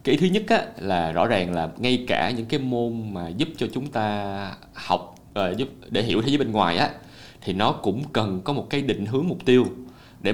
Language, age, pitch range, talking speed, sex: Vietnamese, 20-39, 110-145 Hz, 230 wpm, male